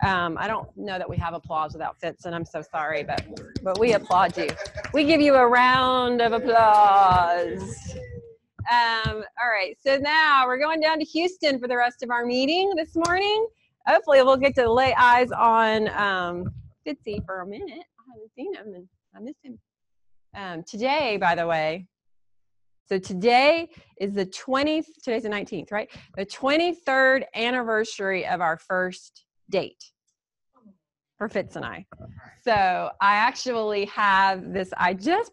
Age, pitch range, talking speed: 30-49, 180-250 Hz, 165 wpm